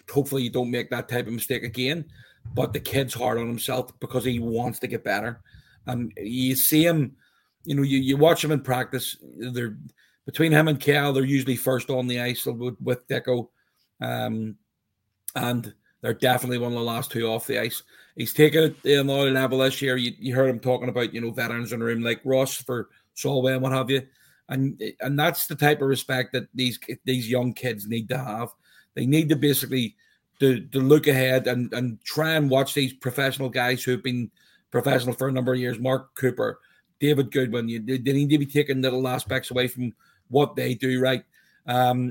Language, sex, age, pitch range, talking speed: English, male, 40-59, 120-140 Hz, 205 wpm